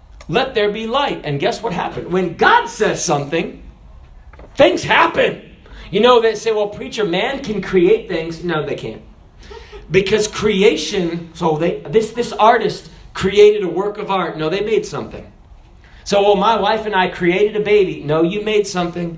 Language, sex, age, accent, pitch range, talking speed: English, male, 40-59, American, 190-280 Hz, 175 wpm